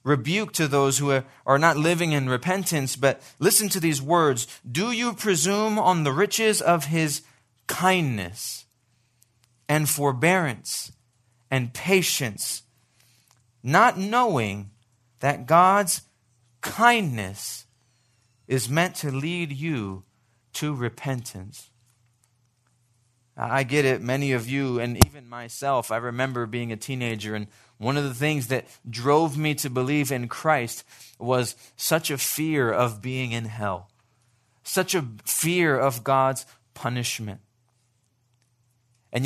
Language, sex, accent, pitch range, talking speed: English, male, American, 120-155 Hz, 120 wpm